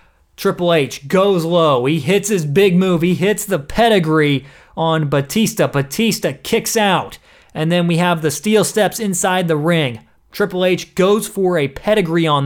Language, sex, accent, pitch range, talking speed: English, male, American, 140-190 Hz, 170 wpm